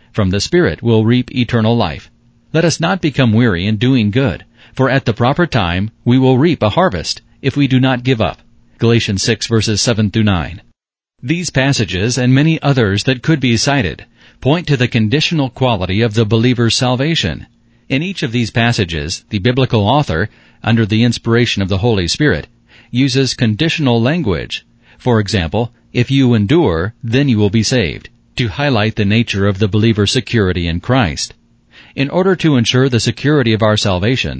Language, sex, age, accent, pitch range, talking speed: English, male, 40-59, American, 110-130 Hz, 175 wpm